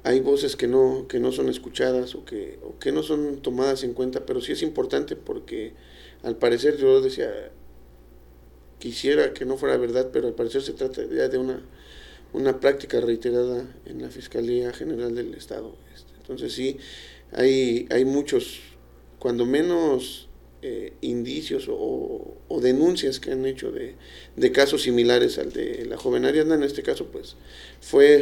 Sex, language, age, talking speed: male, Spanish, 40-59, 165 wpm